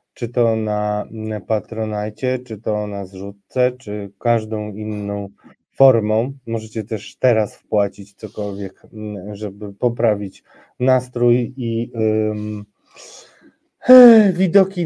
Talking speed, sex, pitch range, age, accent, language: 95 wpm, male, 115-140 Hz, 20-39, native, Polish